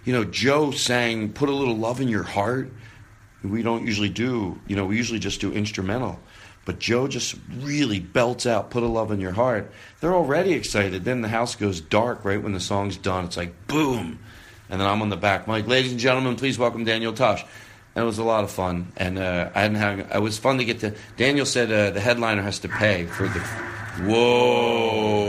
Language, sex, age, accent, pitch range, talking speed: English, male, 40-59, American, 100-125 Hz, 220 wpm